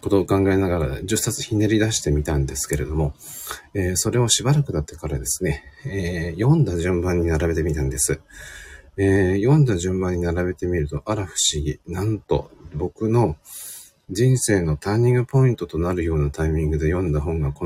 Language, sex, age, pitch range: Japanese, male, 40-59, 75-95 Hz